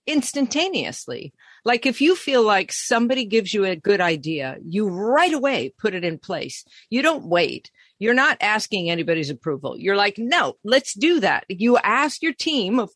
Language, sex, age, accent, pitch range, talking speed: English, female, 50-69, American, 170-240 Hz, 175 wpm